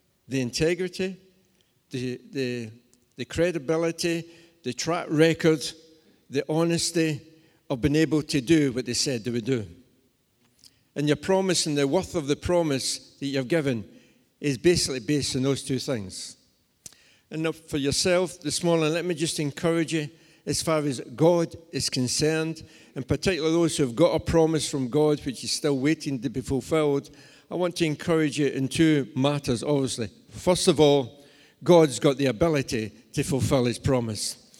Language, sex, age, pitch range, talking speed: English, male, 60-79, 140-170 Hz, 165 wpm